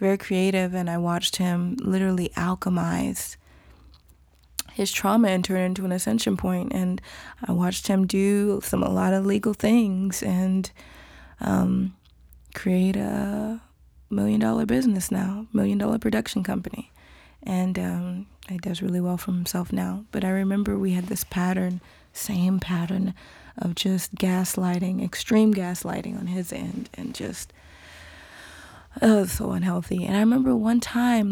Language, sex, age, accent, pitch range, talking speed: English, female, 20-39, American, 175-200 Hz, 145 wpm